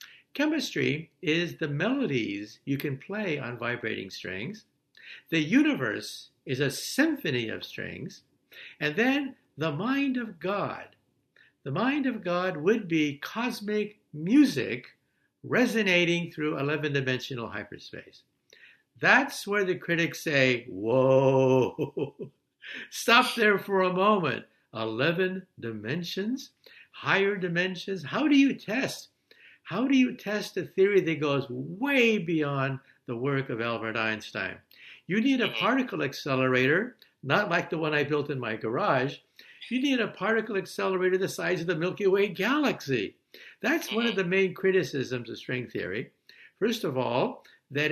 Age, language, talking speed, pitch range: 60-79, English, 135 wpm, 140-215 Hz